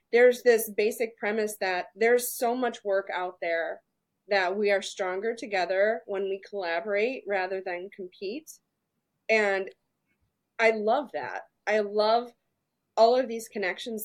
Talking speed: 135 wpm